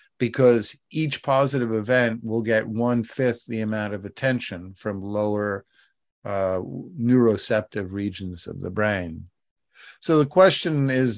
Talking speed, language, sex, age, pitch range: 125 wpm, English, male, 50-69, 105-130 Hz